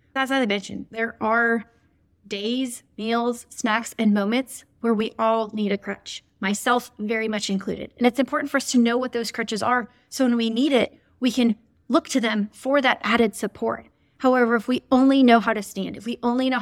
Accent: American